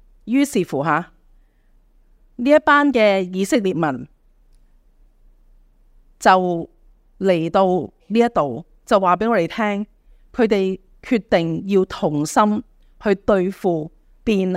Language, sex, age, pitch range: Chinese, female, 30-49, 165-240 Hz